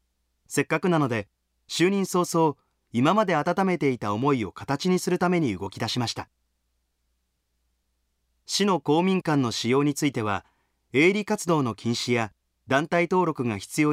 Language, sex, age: Japanese, male, 30-49